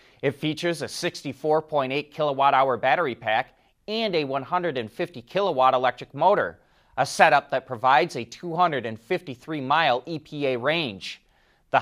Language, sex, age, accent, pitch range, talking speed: English, male, 30-49, American, 130-175 Hz, 120 wpm